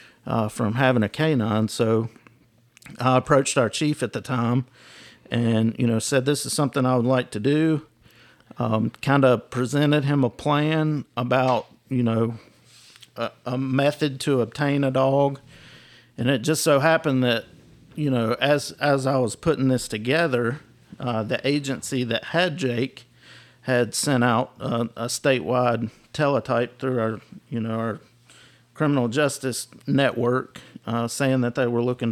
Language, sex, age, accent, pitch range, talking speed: English, male, 50-69, American, 120-140 Hz, 155 wpm